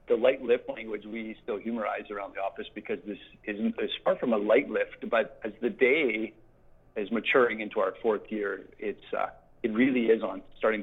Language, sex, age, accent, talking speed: English, male, 40-59, American, 200 wpm